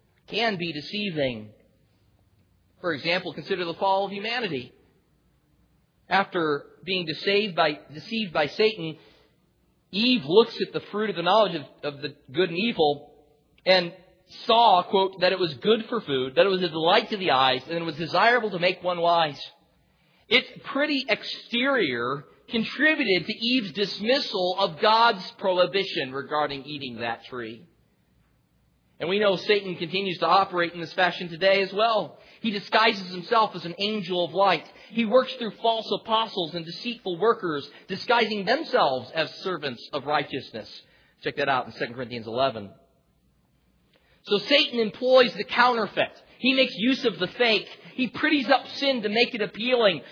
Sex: male